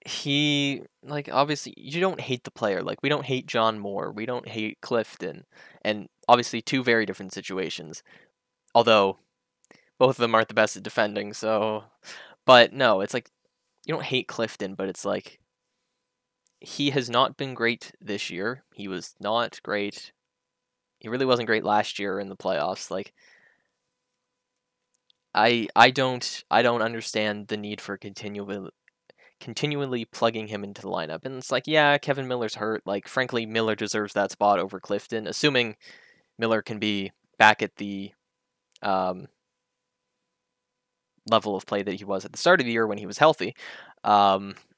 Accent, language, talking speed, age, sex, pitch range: American, English, 165 wpm, 10-29, male, 100-130 Hz